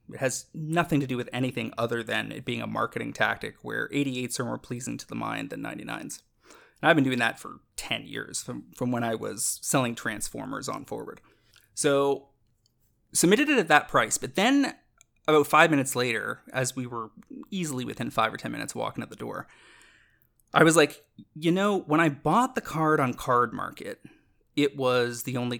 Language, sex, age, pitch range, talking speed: English, male, 30-49, 120-145 Hz, 195 wpm